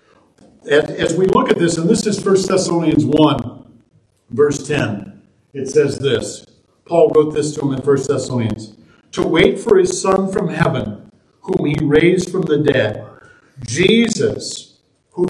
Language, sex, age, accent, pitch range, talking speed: English, male, 50-69, American, 140-195 Hz, 155 wpm